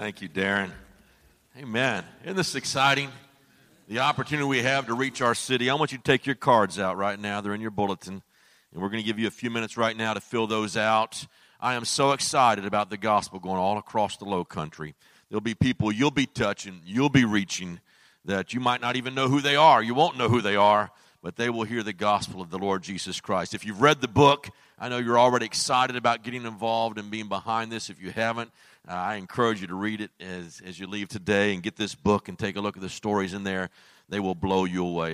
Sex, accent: male, American